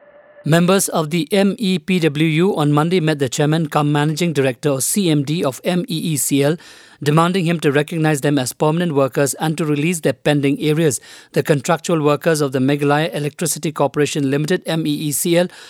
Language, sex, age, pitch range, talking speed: English, male, 50-69, 140-170 Hz, 155 wpm